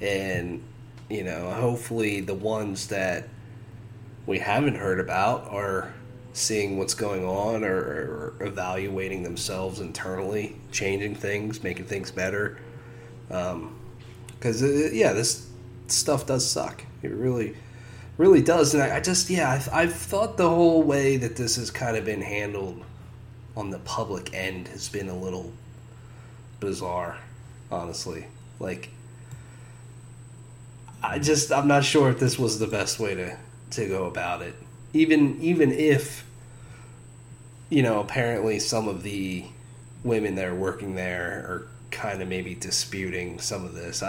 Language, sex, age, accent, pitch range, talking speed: English, male, 30-49, American, 105-125 Hz, 140 wpm